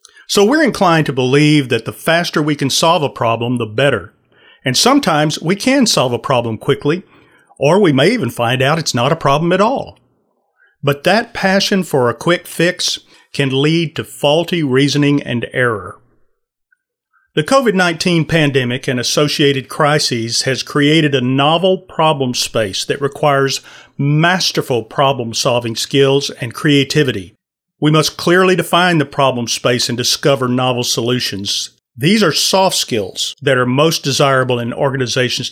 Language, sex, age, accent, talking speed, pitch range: English, male, 40-59, American, 150 wpm, 125-165 Hz